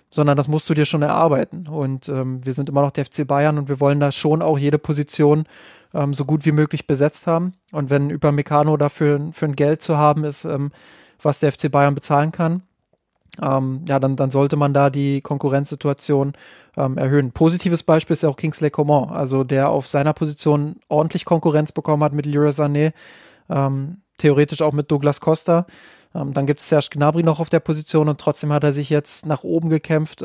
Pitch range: 140-155 Hz